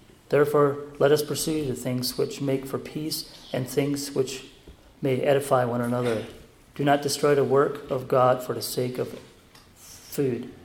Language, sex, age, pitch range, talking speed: English, male, 40-59, 125-140 Hz, 165 wpm